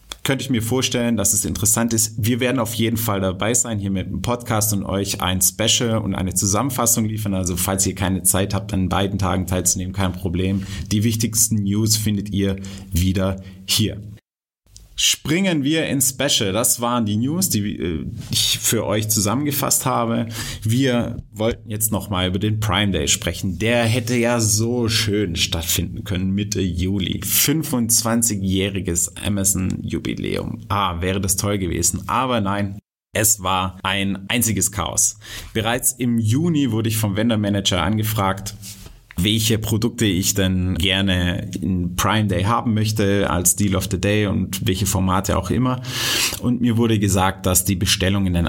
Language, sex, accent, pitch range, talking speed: German, male, German, 95-115 Hz, 155 wpm